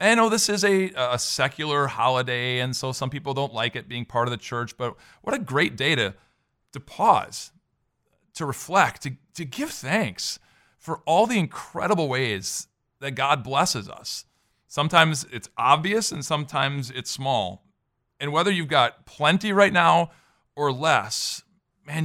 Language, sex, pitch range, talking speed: English, male, 120-155 Hz, 165 wpm